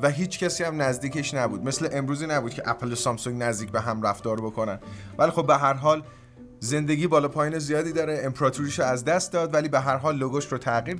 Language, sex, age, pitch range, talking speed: Persian, male, 30-49, 115-150 Hz, 215 wpm